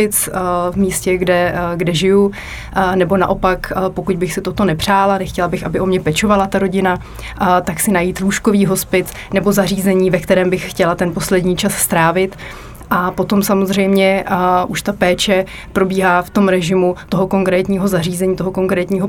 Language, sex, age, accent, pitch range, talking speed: Czech, female, 30-49, native, 180-195 Hz, 160 wpm